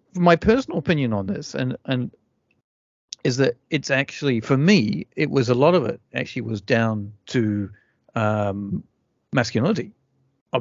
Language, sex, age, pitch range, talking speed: English, male, 40-59, 110-140 Hz, 145 wpm